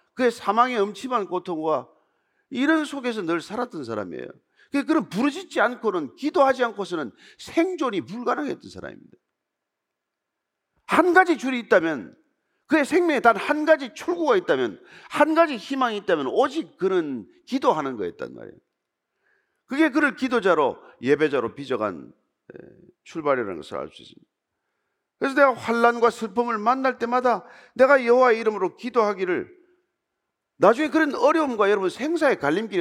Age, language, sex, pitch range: 40-59, Korean, male, 220-320 Hz